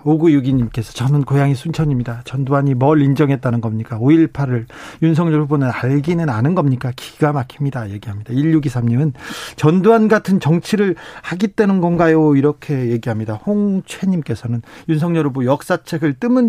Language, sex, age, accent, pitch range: Korean, male, 40-59, native, 130-175 Hz